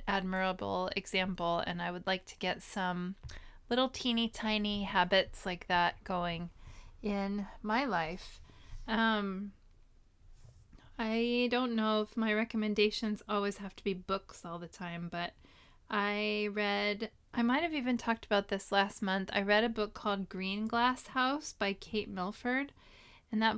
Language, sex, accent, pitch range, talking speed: English, female, American, 190-225 Hz, 150 wpm